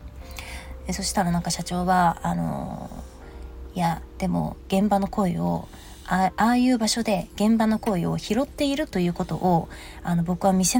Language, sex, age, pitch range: Japanese, female, 20-39, 160-220 Hz